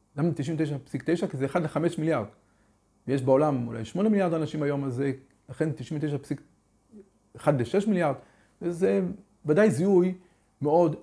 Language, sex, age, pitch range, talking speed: Hebrew, male, 40-59, 130-180 Hz, 125 wpm